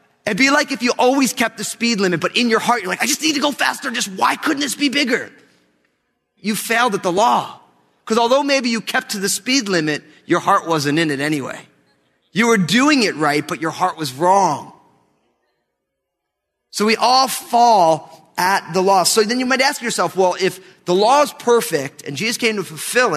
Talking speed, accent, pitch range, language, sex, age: 210 wpm, American, 155-225 Hz, English, male, 30-49